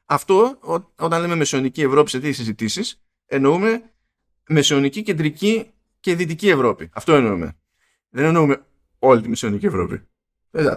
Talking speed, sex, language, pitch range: 135 wpm, male, Greek, 125-175 Hz